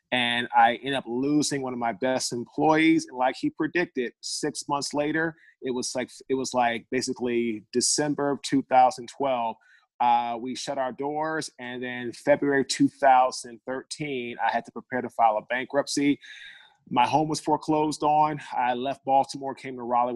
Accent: American